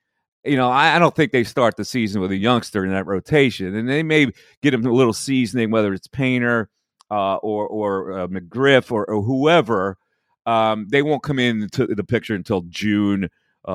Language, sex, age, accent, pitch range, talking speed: English, male, 40-59, American, 105-155 Hz, 190 wpm